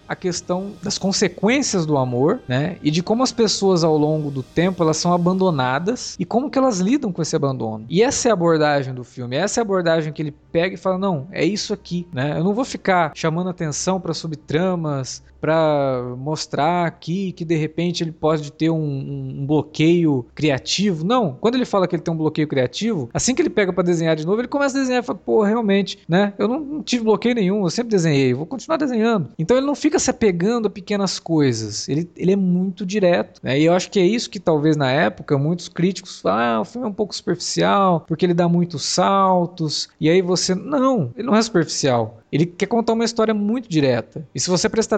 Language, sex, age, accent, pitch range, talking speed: Portuguese, male, 20-39, Brazilian, 150-210 Hz, 225 wpm